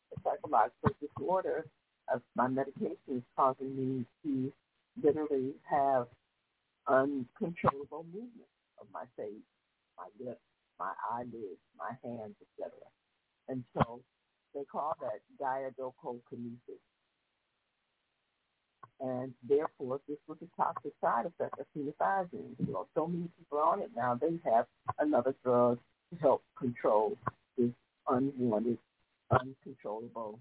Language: English